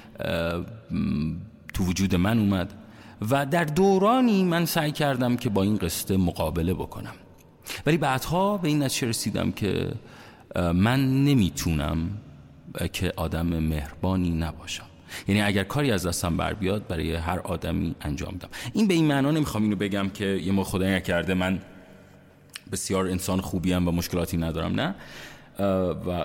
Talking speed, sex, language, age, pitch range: 140 wpm, male, Persian, 40-59, 85-115 Hz